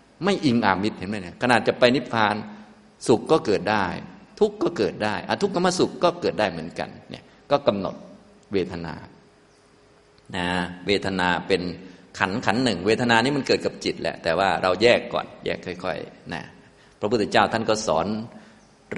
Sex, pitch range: male, 90-115 Hz